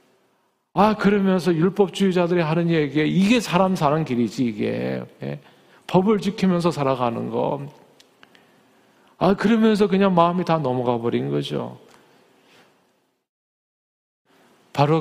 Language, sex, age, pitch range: Korean, male, 40-59, 130-190 Hz